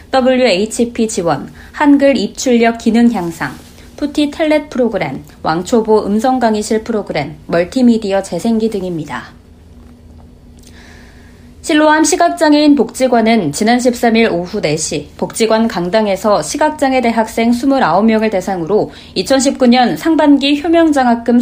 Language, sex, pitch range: Korean, female, 195-260 Hz